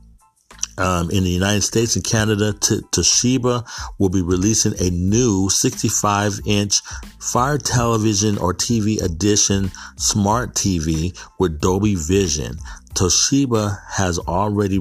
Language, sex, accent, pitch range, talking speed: English, male, American, 90-105 Hz, 115 wpm